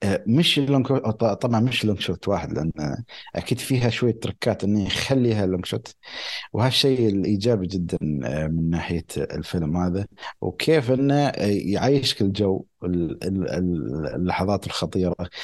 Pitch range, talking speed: 90-125 Hz, 110 wpm